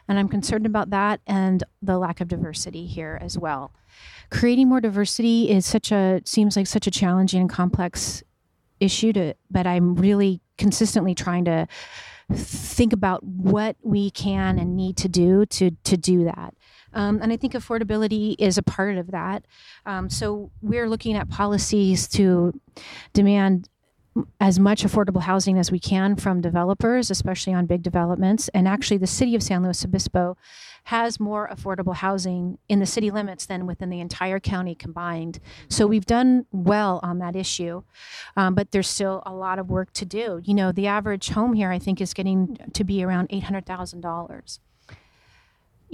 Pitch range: 180-210 Hz